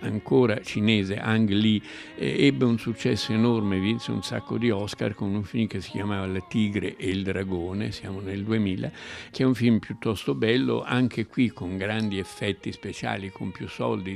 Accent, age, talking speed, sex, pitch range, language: native, 60-79, 180 wpm, male, 100-120 Hz, Italian